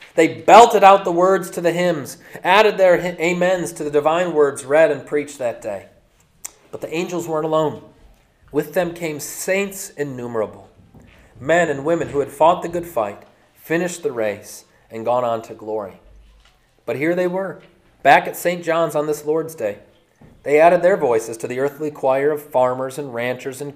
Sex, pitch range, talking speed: male, 115-165 Hz, 180 wpm